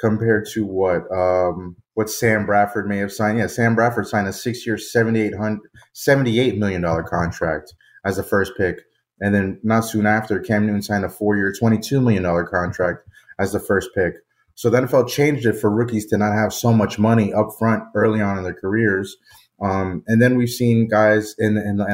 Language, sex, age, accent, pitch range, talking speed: English, male, 30-49, American, 95-115 Hz, 200 wpm